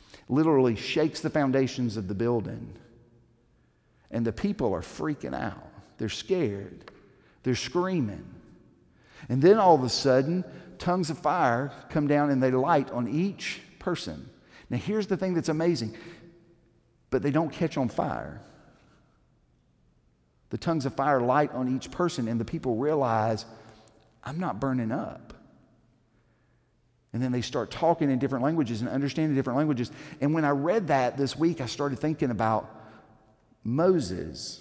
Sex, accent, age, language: male, American, 50-69, English